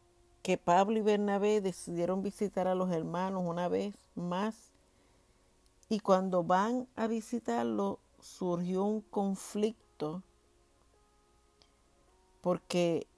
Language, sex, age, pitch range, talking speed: Spanish, female, 50-69, 130-195 Hz, 95 wpm